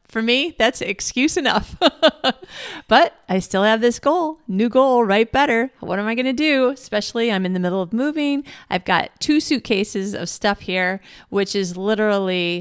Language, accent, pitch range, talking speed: English, American, 185-235 Hz, 175 wpm